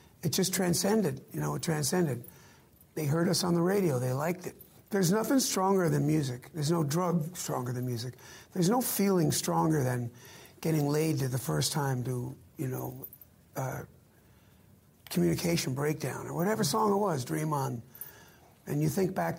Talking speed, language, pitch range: 170 wpm, English, 140-190 Hz